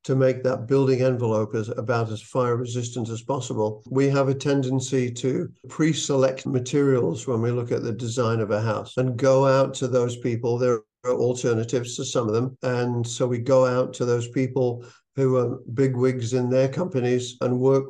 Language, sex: English, male